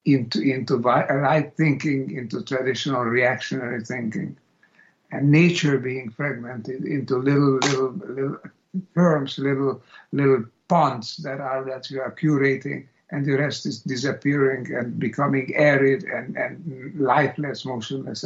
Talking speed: 125 wpm